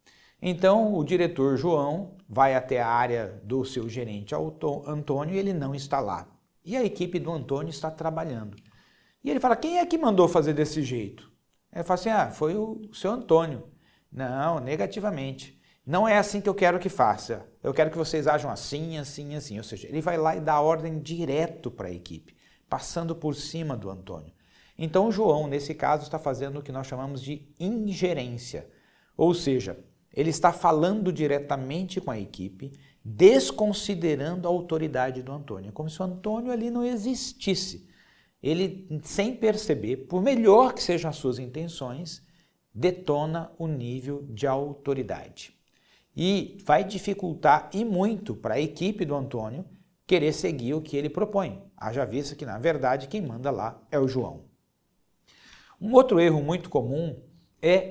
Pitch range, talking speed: 135-185 Hz, 165 wpm